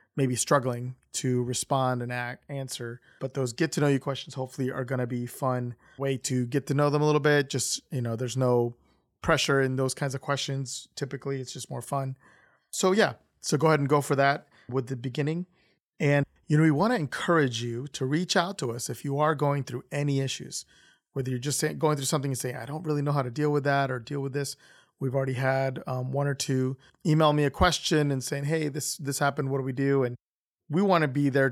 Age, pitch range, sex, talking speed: 30-49, 130-150 Hz, male, 235 wpm